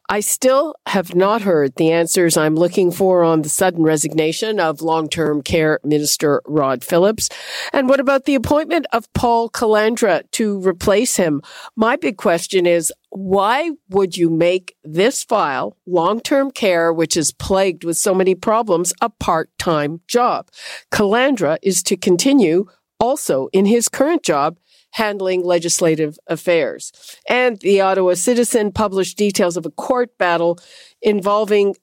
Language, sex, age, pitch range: English, female, 50-69, 170-230 Hz